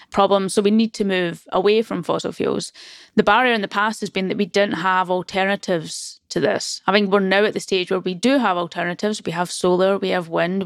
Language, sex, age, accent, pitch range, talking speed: English, female, 20-39, British, 180-210 Hz, 235 wpm